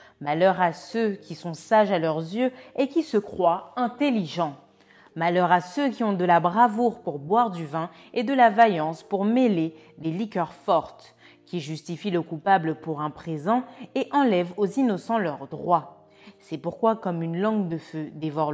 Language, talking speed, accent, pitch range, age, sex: French, 180 wpm, French, 155-220 Hz, 30-49, female